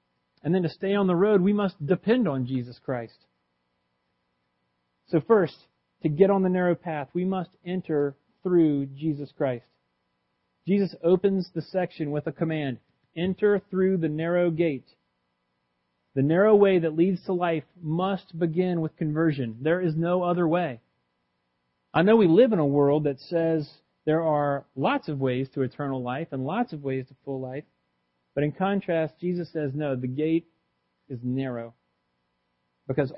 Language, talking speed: English, 165 wpm